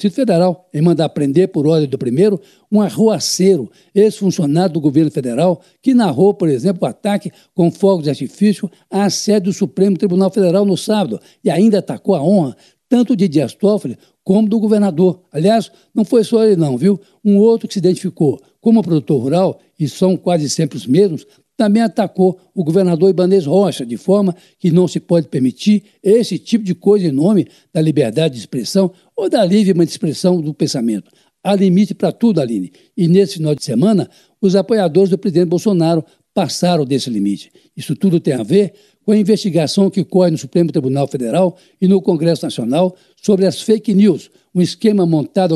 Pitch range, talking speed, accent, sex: 165-200 Hz, 180 wpm, Brazilian, male